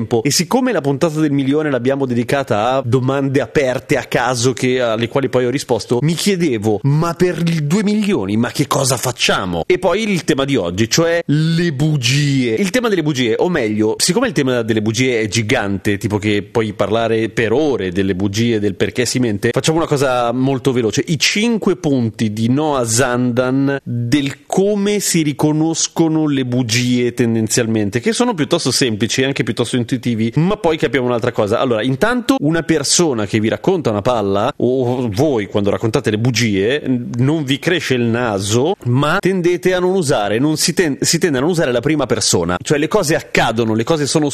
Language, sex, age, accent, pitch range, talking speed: Italian, male, 30-49, native, 120-155 Hz, 185 wpm